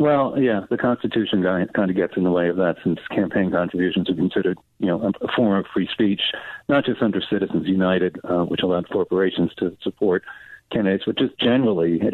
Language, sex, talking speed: English, male, 200 wpm